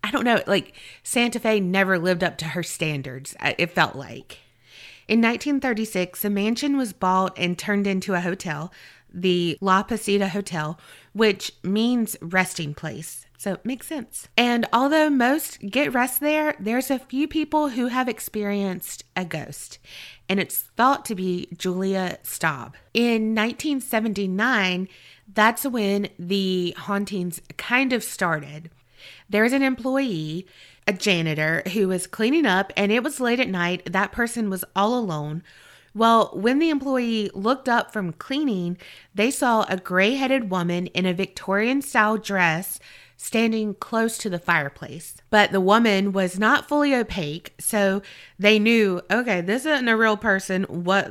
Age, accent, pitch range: 30-49, American, 180-235 Hz